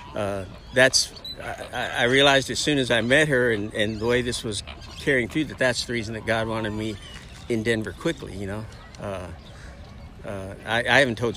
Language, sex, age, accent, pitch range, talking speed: English, male, 60-79, American, 100-120 Hz, 200 wpm